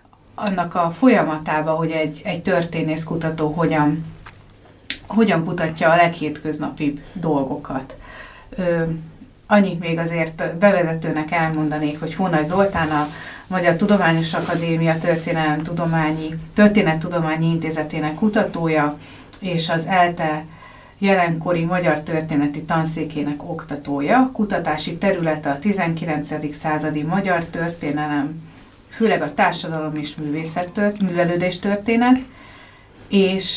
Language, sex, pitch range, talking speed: Hungarian, female, 155-180 Hz, 95 wpm